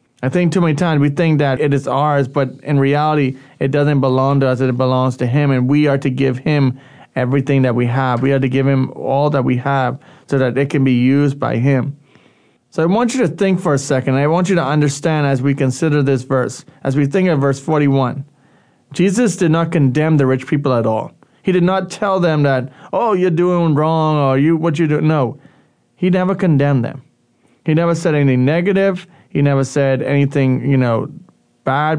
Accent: American